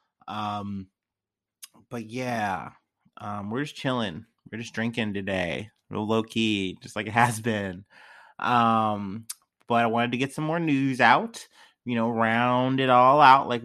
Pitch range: 115-135 Hz